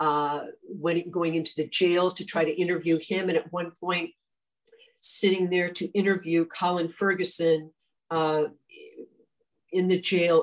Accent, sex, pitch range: American, female, 160-185 Hz